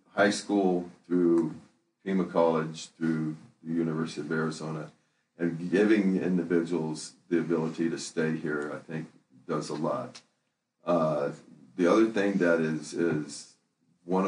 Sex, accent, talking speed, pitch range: male, American, 130 wpm, 80-85 Hz